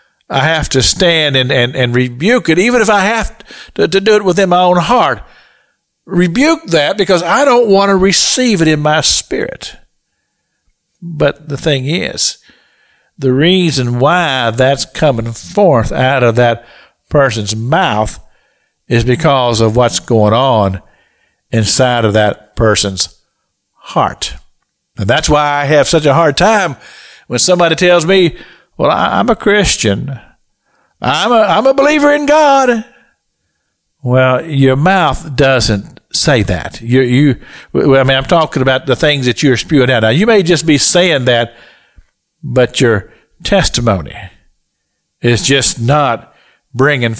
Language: English